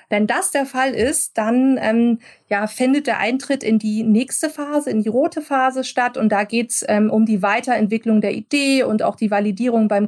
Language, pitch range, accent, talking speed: German, 210-255 Hz, German, 210 wpm